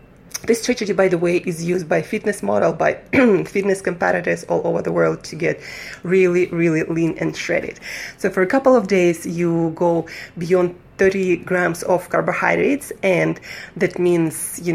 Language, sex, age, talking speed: English, female, 20-39, 165 wpm